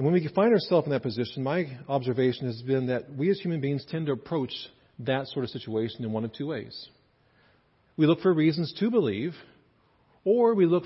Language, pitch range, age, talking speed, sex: English, 130-175 Hz, 40-59, 210 wpm, male